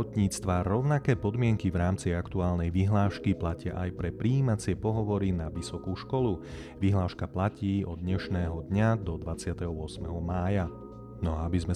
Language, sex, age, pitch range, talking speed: Slovak, male, 30-49, 85-105 Hz, 135 wpm